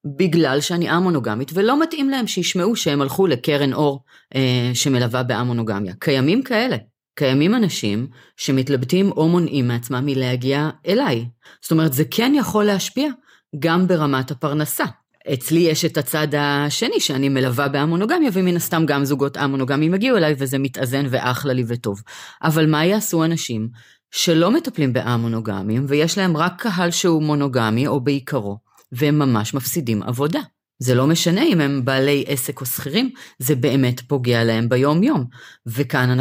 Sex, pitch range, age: female, 125-175 Hz, 30-49